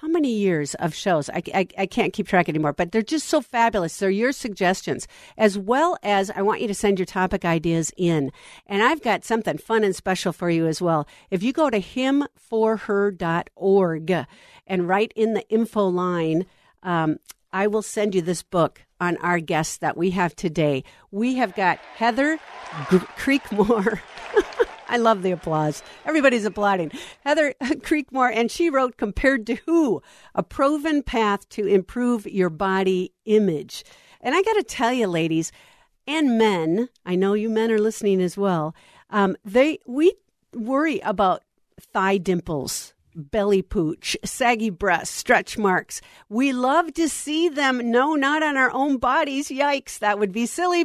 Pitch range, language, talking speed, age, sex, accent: 185-265 Hz, English, 170 wpm, 50-69, female, American